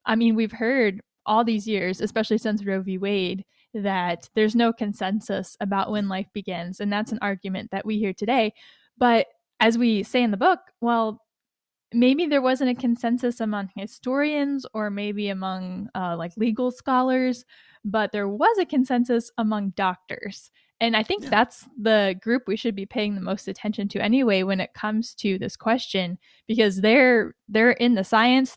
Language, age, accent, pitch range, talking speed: English, 10-29, American, 195-235 Hz, 175 wpm